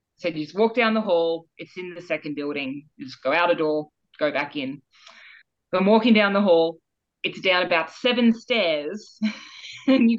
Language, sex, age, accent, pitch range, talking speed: English, female, 20-39, Australian, 160-205 Hz, 200 wpm